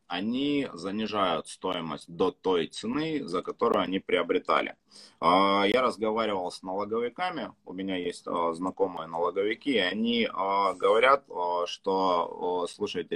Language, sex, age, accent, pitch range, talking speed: Russian, male, 20-39, native, 90-115 Hz, 110 wpm